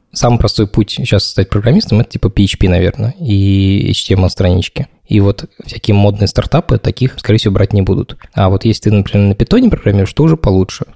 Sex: male